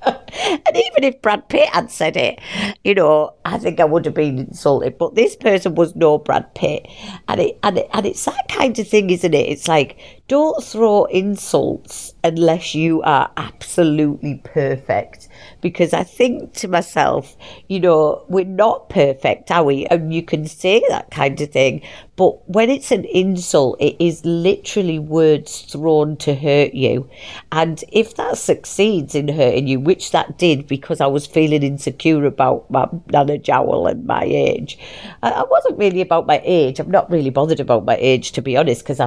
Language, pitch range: English, 145-195 Hz